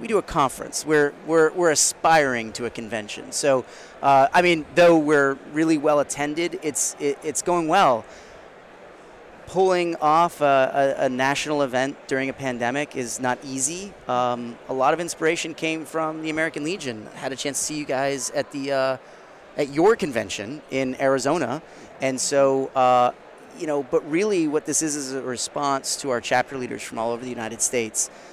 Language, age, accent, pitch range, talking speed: English, 30-49, American, 125-155 Hz, 180 wpm